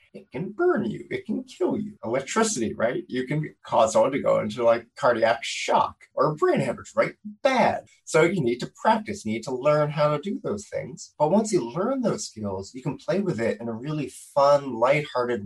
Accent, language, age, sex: American, English, 30-49, male